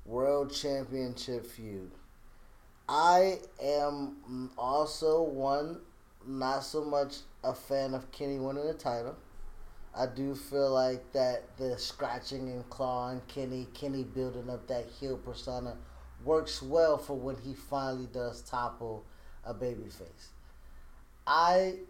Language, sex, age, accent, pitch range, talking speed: English, male, 20-39, American, 120-155 Hz, 125 wpm